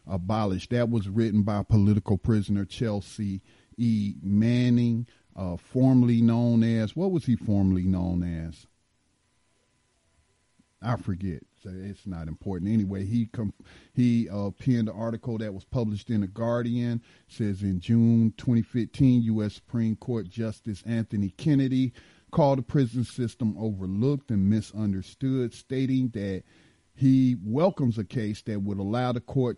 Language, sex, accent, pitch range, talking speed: English, male, American, 100-120 Hz, 140 wpm